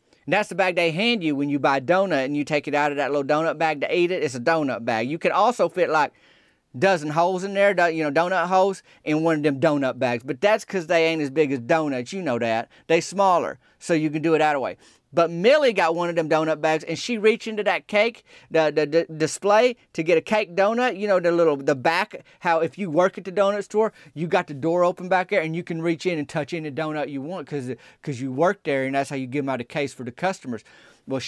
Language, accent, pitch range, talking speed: English, American, 140-175 Hz, 270 wpm